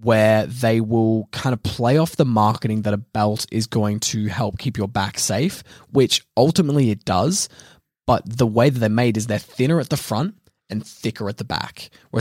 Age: 20-39